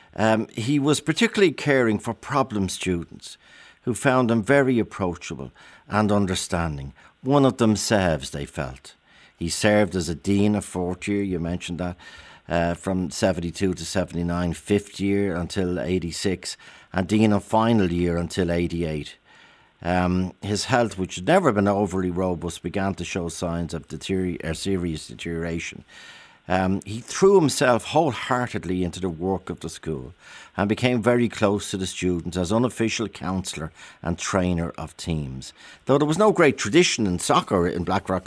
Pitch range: 85-110 Hz